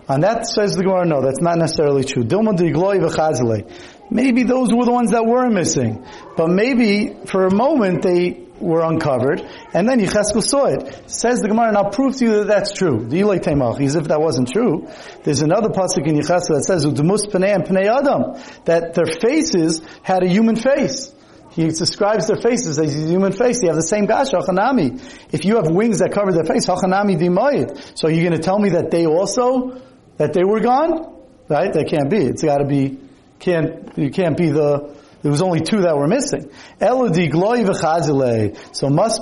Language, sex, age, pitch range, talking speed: English, male, 40-59, 160-220 Hz, 185 wpm